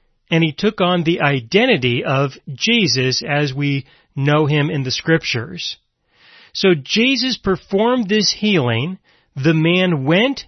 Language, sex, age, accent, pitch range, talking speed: English, male, 40-59, American, 150-210 Hz, 130 wpm